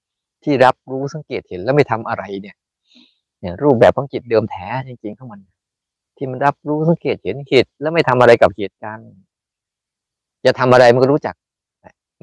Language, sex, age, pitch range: Thai, male, 20-39, 110-135 Hz